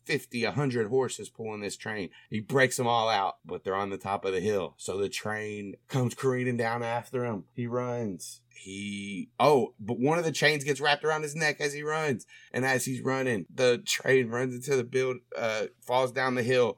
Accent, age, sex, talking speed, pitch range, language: American, 30-49, male, 210 wpm, 120-145 Hz, English